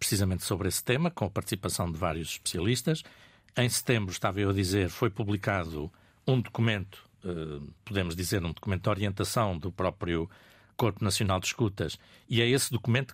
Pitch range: 100-125 Hz